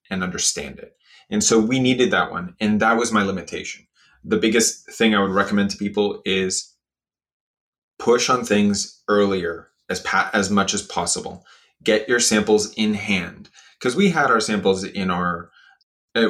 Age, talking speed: 20-39, 170 wpm